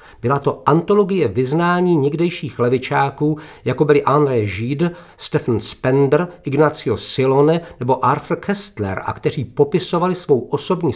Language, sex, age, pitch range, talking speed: Czech, male, 50-69, 115-155 Hz, 120 wpm